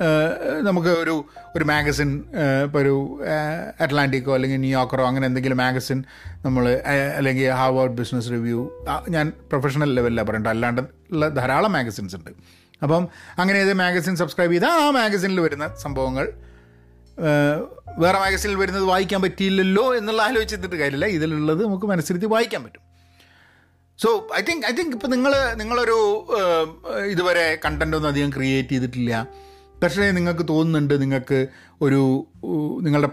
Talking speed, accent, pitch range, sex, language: 125 wpm, native, 130-175 Hz, male, Malayalam